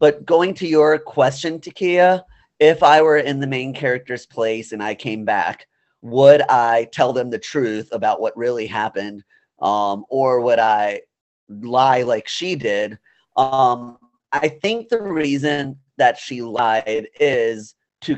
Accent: American